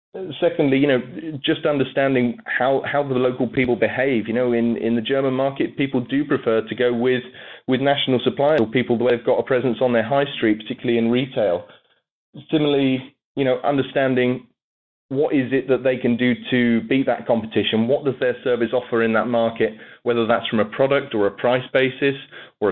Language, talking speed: English, 195 wpm